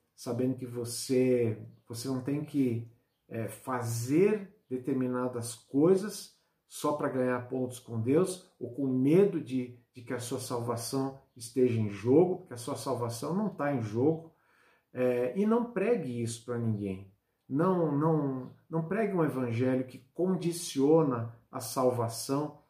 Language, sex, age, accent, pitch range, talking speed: Portuguese, male, 50-69, Brazilian, 120-145 Hz, 145 wpm